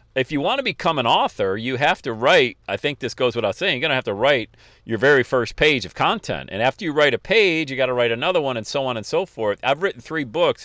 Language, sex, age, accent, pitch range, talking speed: English, male, 40-59, American, 105-135 Hz, 285 wpm